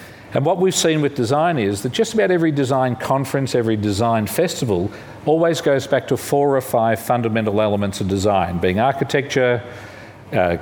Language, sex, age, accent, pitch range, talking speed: English, male, 50-69, Australian, 105-130 Hz, 170 wpm